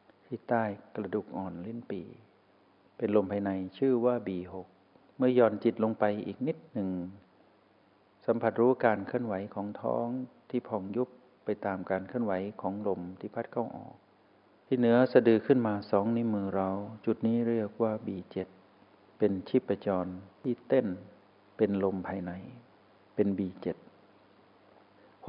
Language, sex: Thai, male